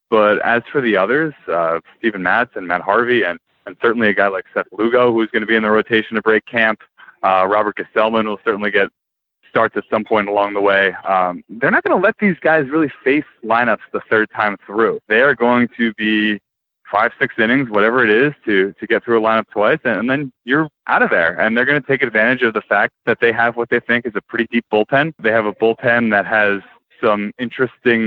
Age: 20-39